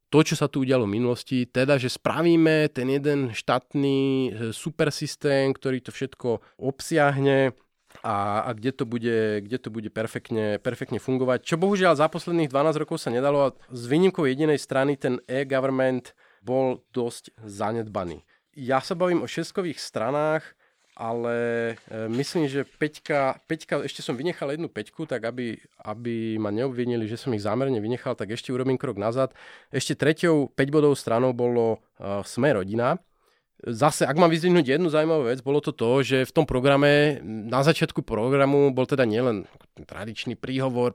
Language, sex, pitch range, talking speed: Slovak, male, 120-150 Hz, 160 wpm